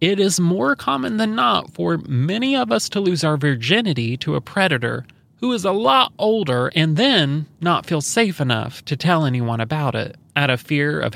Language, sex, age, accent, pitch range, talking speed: English, male, 30-49, American, 125-170 Hz, 200 wpm